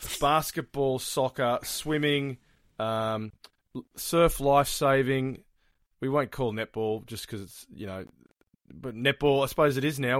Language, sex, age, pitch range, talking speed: English, male, 20-39, 115-150 Hz, 130 wpm